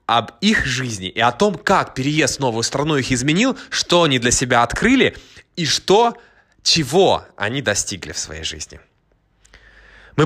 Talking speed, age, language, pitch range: 160 wpm, 20-39, Russian, 105-145 Hz